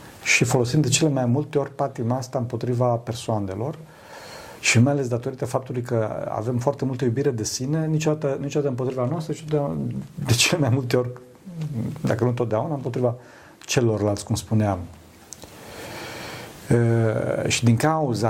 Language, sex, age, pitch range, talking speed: Romanian, male, 40-59, 115-145 Hz, 150 wpm